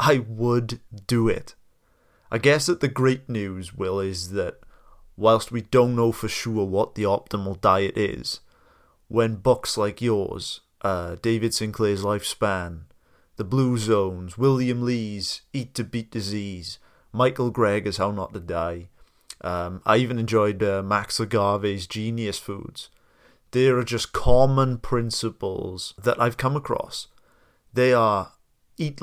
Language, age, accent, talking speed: English, 30-49, British, 140 wpm